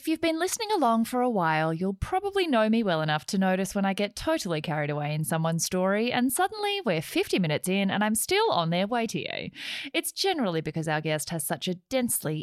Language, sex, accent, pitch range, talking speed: English, female, Australian, 165-255 Hz, 230 wpm